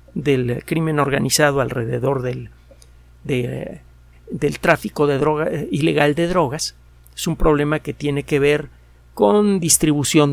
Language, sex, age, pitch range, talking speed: Spanish, male, 50-69, 125-170 Hz, 130 wpm